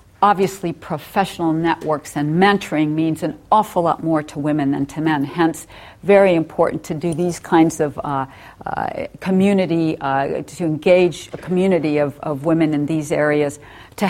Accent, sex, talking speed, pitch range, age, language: American, female, 160 wpm, 155-195 Hz, 50-69, English